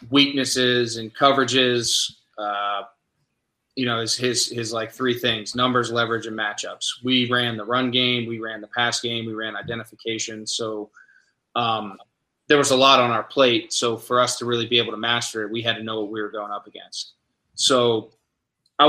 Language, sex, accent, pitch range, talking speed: English, male, American, 115-125 Hz, 190 wpm